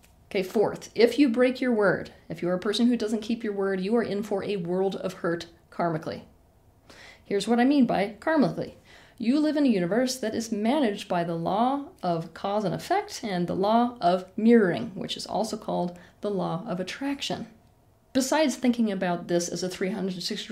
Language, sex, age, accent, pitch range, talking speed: English, female, 30-49, American, 180-235 Hz, 195 wpm